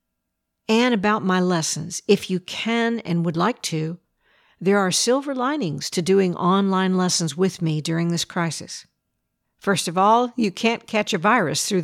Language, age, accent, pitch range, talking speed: English, 50-69, American, 170-210 Hz, 165 wpm